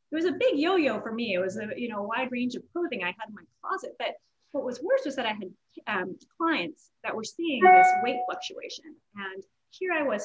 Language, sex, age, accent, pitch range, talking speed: English, female, 30-49, American, 195-280 Hz, 245 wpm